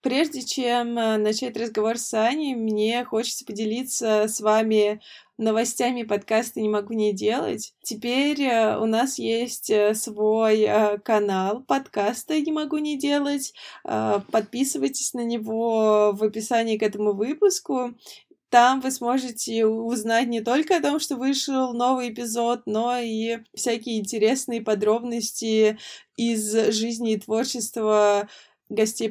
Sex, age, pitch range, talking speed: female, 20-39, 210-240 Hz, 120 wpm